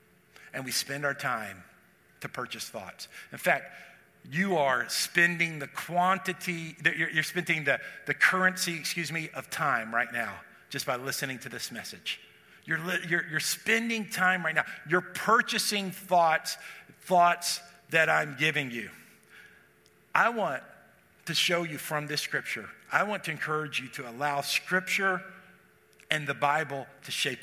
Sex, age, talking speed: male, 50-69, 150 wpm